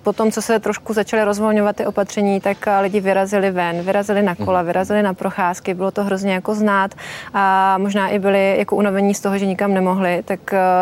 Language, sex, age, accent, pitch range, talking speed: Czech, female, 20-39, native, 180-200 Hz, 195 wpm